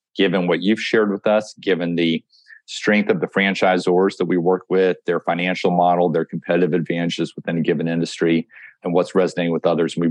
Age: 40-59